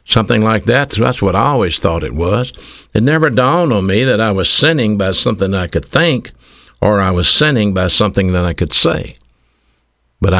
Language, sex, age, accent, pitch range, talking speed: English, male, 60-79, American, 75-105 Hz, 200 wpm